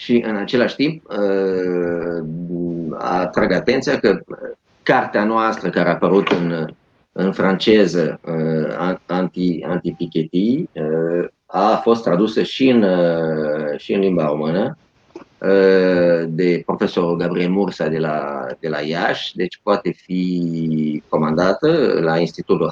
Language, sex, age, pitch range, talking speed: Romanian, male, 30-49, 80-100 Hz, 110 wpm